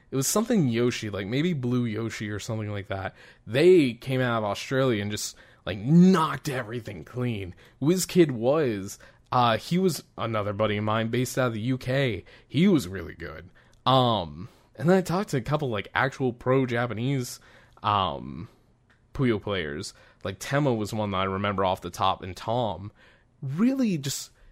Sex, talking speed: male, 165 wpm